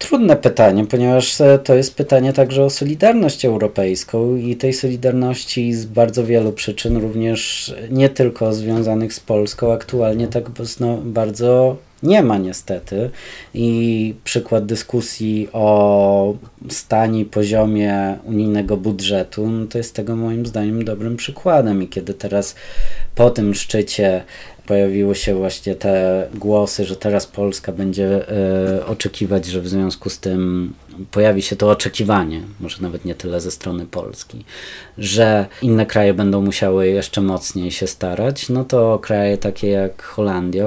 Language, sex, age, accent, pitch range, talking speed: Polish, male, 20-39, native, 95-115 Hz, 135 wpm